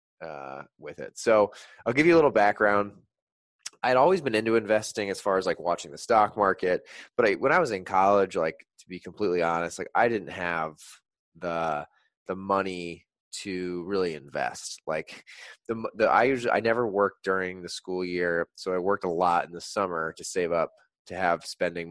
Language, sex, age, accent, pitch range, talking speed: English, male, 20-39, American, 85-100 Hz, 200 wpm